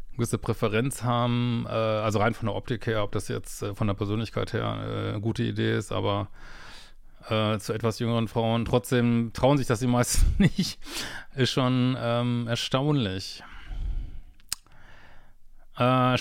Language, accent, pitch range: German, German, 115-130 Hz